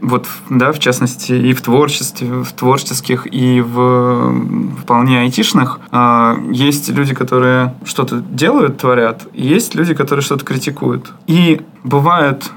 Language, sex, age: Russian, male, 20-39